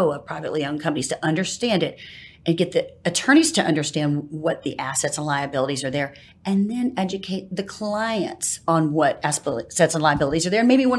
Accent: American